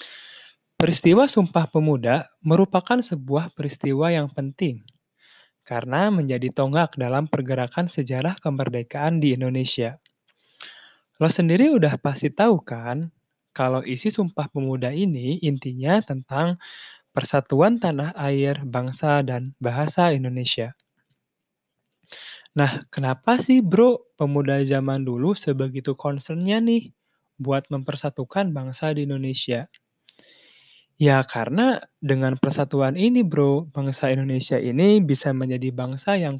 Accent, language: native, Indonesian